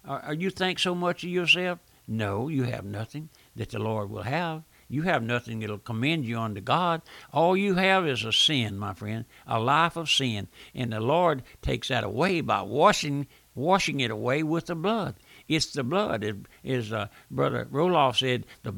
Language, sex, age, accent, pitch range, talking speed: English, male, 60-79, American, 120-165 Hz, 195 wpm